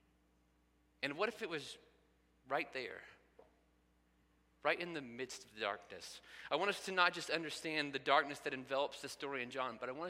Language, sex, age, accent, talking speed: English, male, 30-49, American, 190 wpm